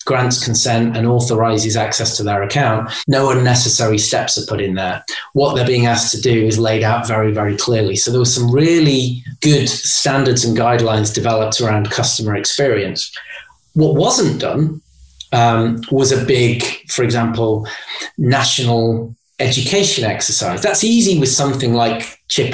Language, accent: English, British